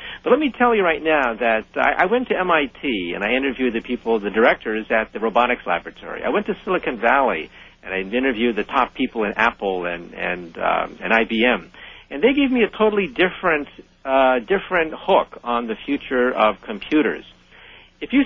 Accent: American